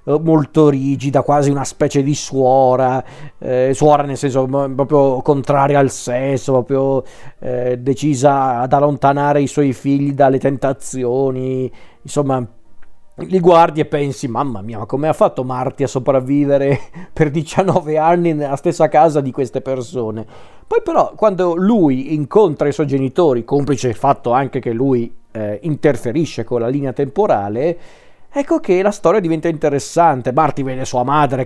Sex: male